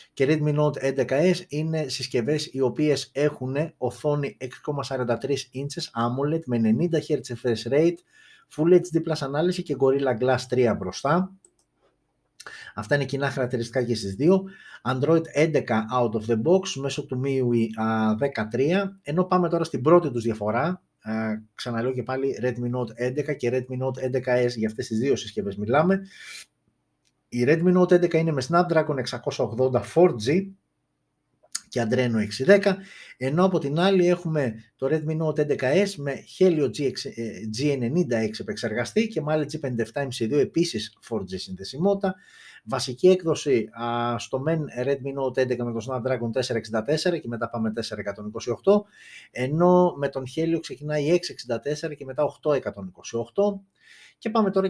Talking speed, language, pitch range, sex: 135 wpm, Greek, 125-170 Hz, male